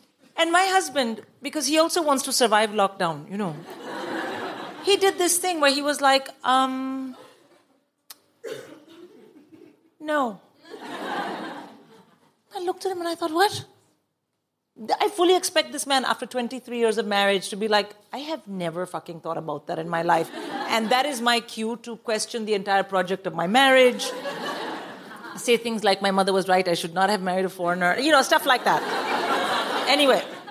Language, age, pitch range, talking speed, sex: English, 40-59, 220-315 Hz, 170 wpm, female